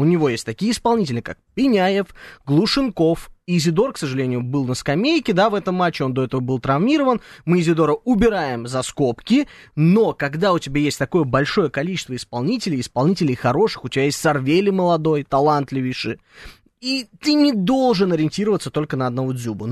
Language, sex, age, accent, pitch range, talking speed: Russian, male, 20-39, native, 135-205 Hz, 165 wpm